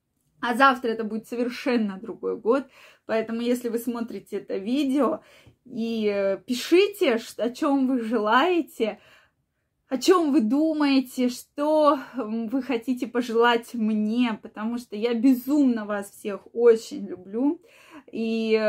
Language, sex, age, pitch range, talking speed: Russian, female, 20-39, 210-255 Hz, 120 wpm